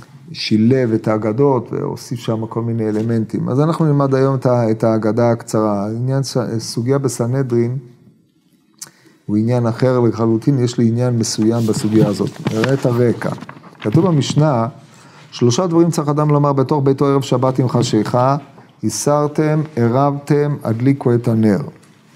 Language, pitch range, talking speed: Hebrew, 120-155 Hz, 135 wpm